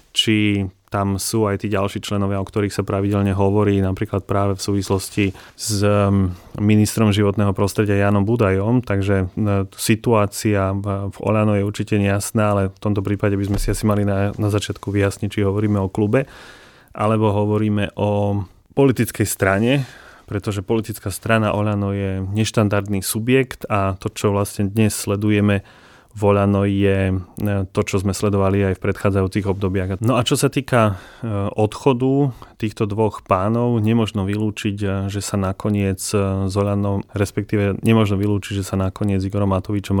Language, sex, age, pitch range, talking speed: Slovak, male, 30-49, 100-105 Hz, 145 wpm